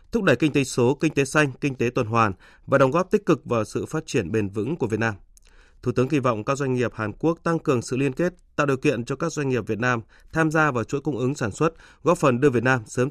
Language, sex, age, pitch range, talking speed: Vietnamese, male, 20-39, 110-145 Hz, 290 wpm